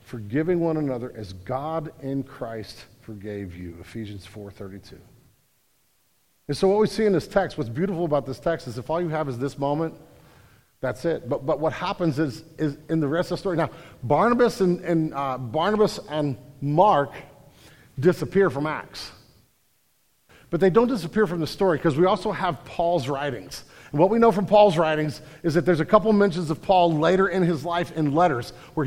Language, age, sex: English, 50-69, male